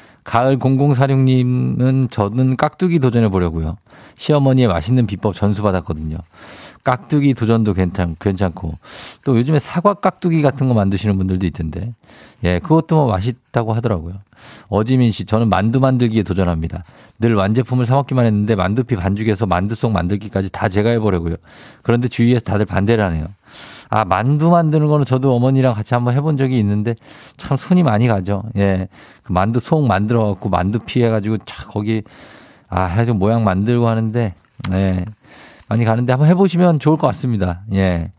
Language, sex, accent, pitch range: Korean, male, native, 100-130 Hz